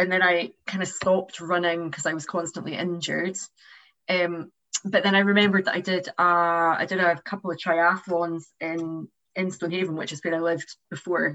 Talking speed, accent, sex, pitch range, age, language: 190 wpm, British, female, 165-185 Hz, 20-39, English